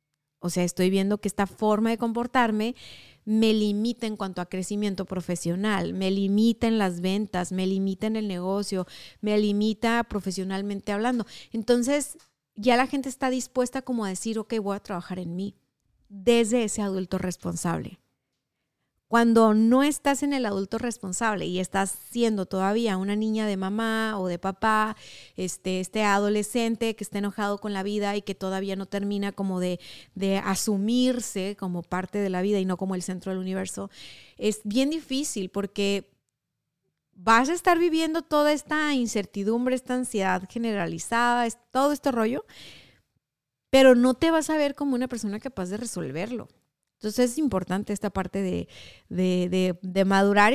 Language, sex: Spanish, female